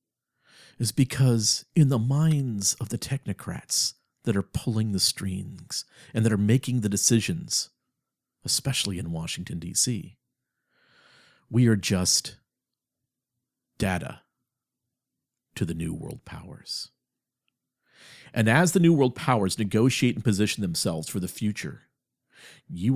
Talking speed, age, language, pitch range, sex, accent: 120 wpm, 50-69, English, 100-135 Hz, male, American